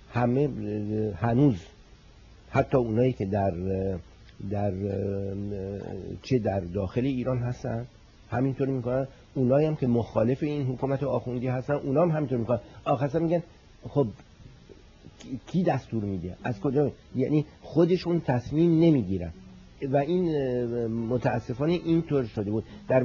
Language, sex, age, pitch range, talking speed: Persian, male, 60-79, 110-145 Hz, 115 wpm